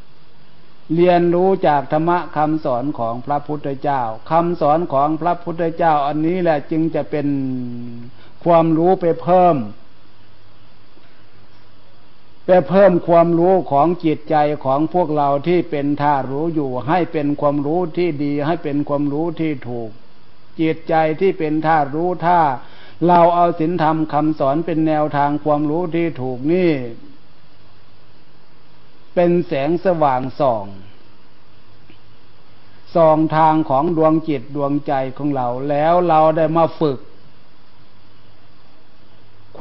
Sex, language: male, Thai